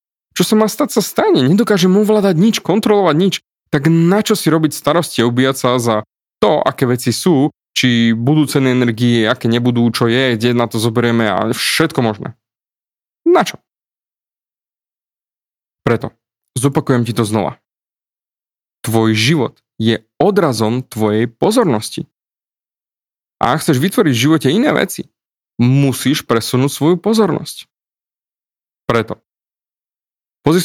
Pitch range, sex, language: 120-165 Hz, male, Slovak